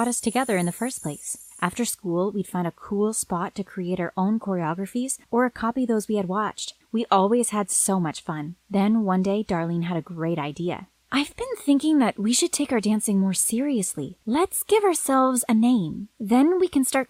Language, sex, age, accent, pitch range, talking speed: English, female, 20-39, American, 180-240 Hz, 205 wpm